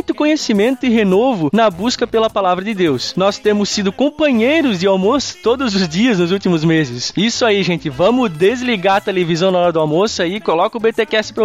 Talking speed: 195 wpm